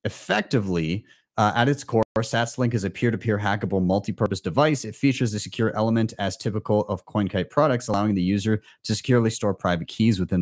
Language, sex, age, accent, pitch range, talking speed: English, male, 30-49, American, 90-115 Hz, 180 wpm